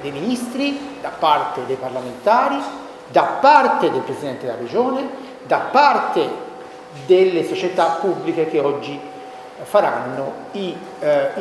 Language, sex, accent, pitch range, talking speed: Italian, male, native, 170-250 Hz, 110 wpm